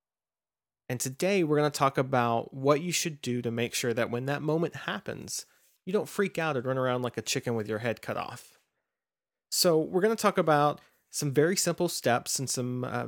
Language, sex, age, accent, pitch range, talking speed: English, male, 30-49, American, 125-160 Hz, 215 wpm